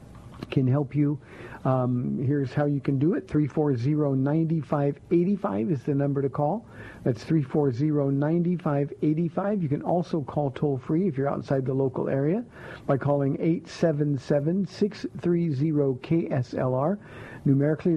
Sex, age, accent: male, 50-69, American